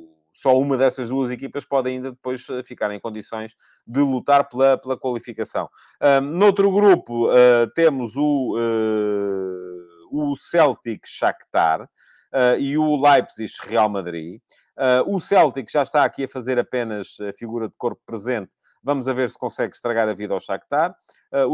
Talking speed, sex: 160 wpm, male